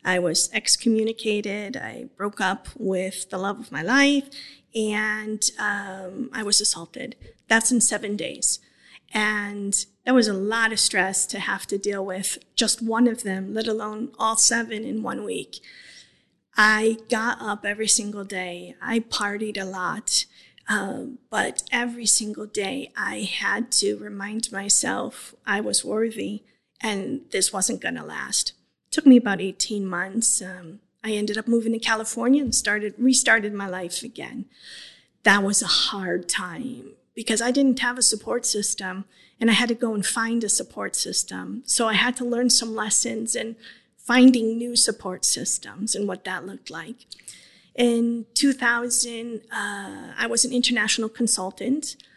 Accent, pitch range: American, 200-240 Hz